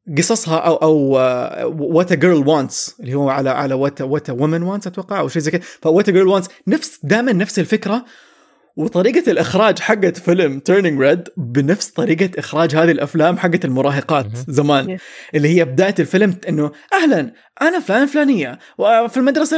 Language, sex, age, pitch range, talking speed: English, male, 20-39, 155-215 Hz, 170 wpm